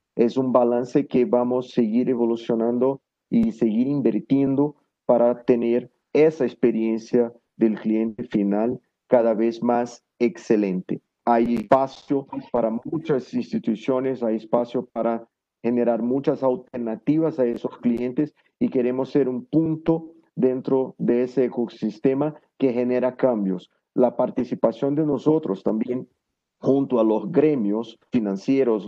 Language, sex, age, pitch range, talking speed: Spanish, male, 40-59, 115-135 Hz, 120 wpm